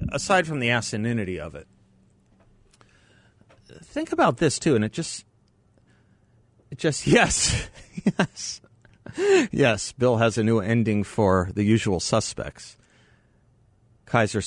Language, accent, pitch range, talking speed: English, American, 90-120 Hz, 115 wpm